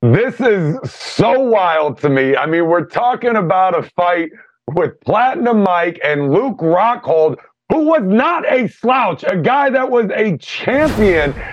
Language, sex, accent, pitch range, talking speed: English, male, American, 160-225 Hz, 155 wpm